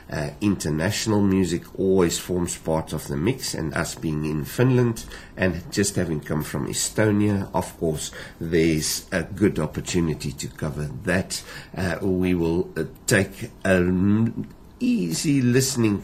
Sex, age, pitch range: male, 60-79, 80-105 Hz